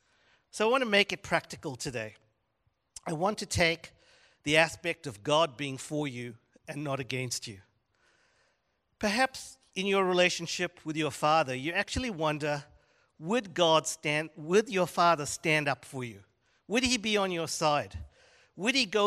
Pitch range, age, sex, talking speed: 140-190 Hz, 50-69, male, 165 wpm